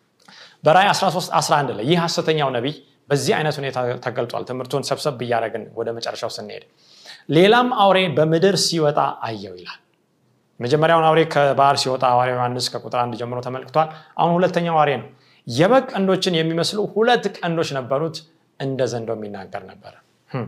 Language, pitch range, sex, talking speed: Amharic, 135-175 Hz, male, 130 wpm